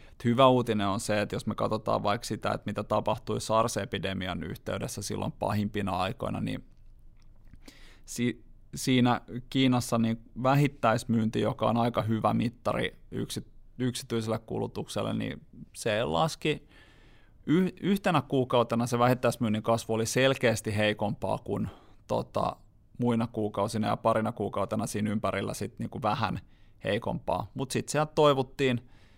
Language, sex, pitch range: Finnish, male, 105-120 Hz